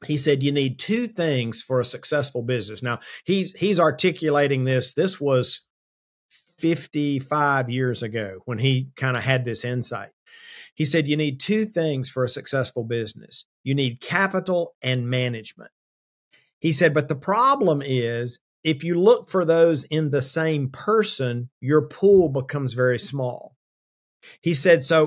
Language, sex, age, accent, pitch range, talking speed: English, male, 50-69, American, 125-165 Hz, 155 wpm